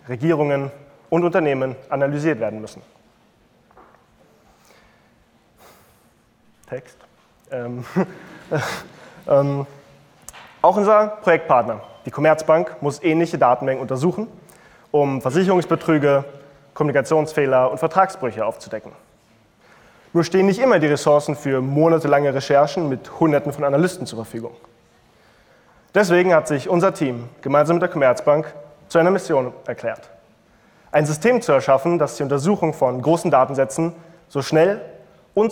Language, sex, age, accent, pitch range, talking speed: German, male, 30-49, German, 130-170 Hz, 110 wpm